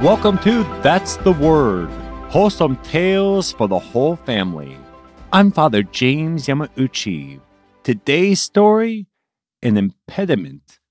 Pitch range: 80-120 Hz